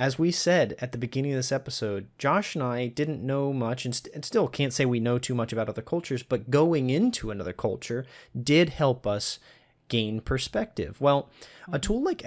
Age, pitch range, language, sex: 30-49, 115-155 Hz, English, male